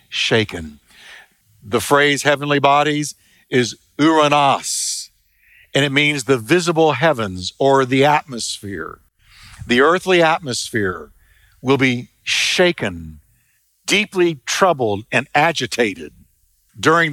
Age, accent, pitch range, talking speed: 60-79, American, 120-165 Hz, 95 wpm